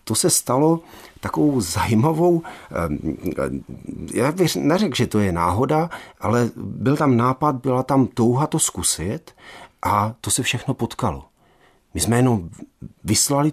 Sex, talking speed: male, 135 wpm